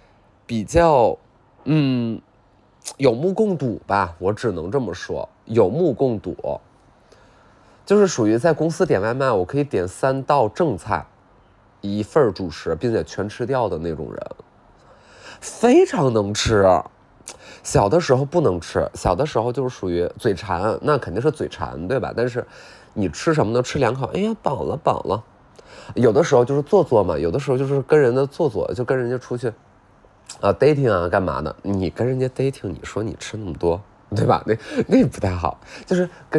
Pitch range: 100-140 Hz